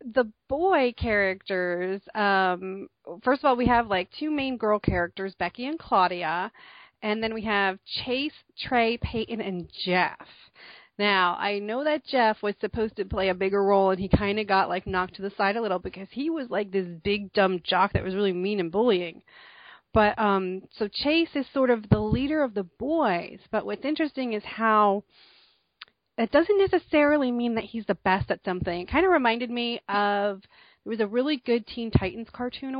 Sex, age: female, 30-49